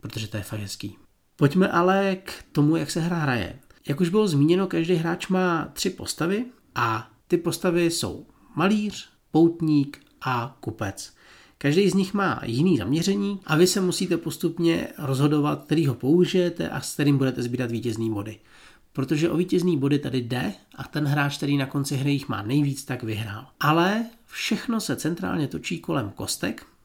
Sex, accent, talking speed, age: male, native, 170 wpm, 40-59